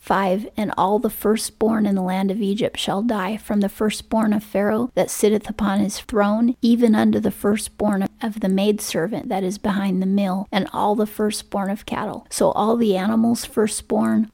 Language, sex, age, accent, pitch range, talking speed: English, female, 30-49, American, 195-225 Hz, 190 wpm